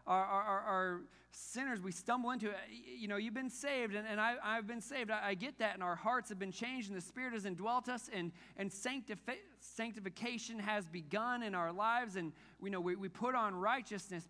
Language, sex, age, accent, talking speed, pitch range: English, male, 40-59, American, 220 wpm, 145-205 Hz